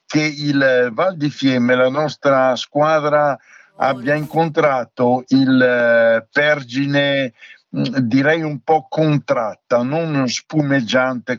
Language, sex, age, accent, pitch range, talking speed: Italian, male, 60-79, native, 125-155 Hz, 95 wpm